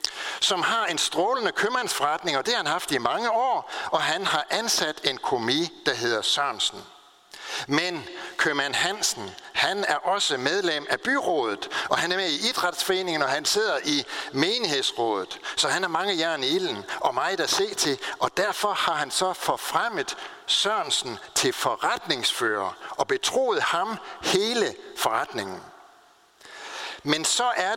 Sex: male